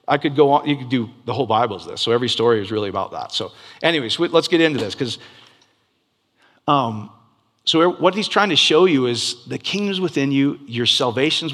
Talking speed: 210 wpm